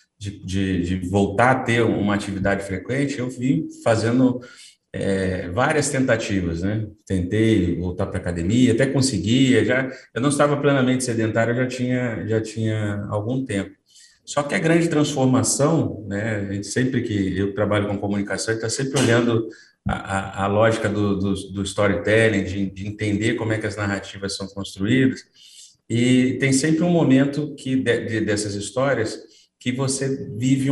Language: Portuguese